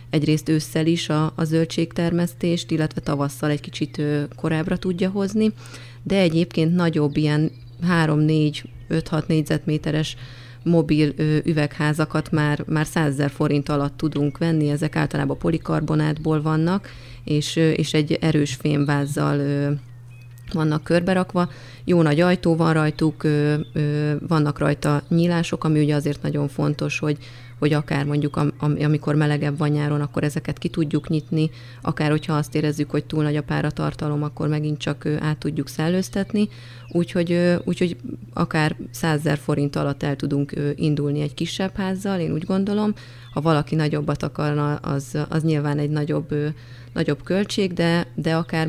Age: 30-49